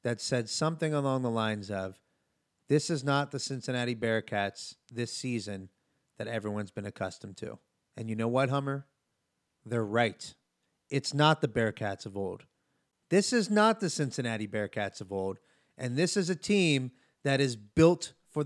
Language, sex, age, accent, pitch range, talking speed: English, male, 30-49, American, 115-155 Hz, 165 wpm